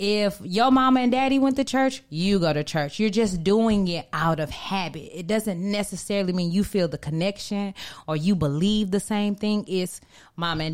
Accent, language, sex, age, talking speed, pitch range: American, English, female, 20-39, 200 wpm, 165-220 Hz